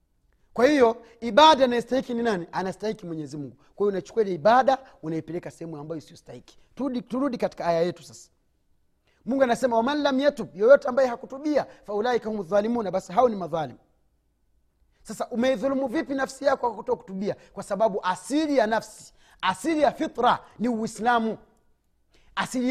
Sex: male